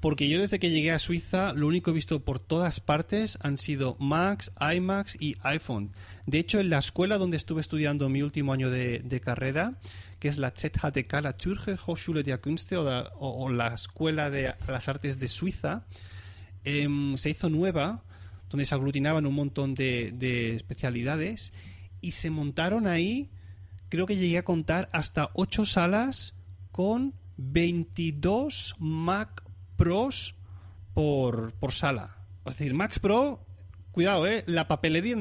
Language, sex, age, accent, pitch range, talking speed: Spanish, male, 30-49, Spanish, 115-165 Hz, 155 wpm